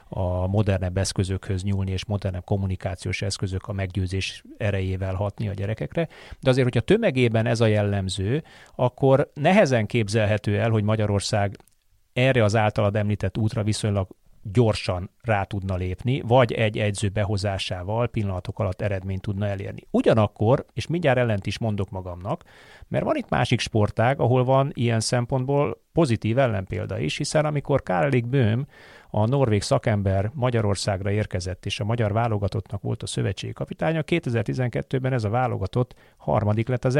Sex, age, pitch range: male, 30-49, 100-125 Hz